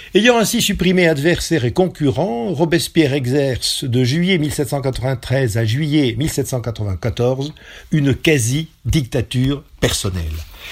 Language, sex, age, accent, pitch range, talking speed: French, male, 50-69, French, 120-170 Hz, 95 wpm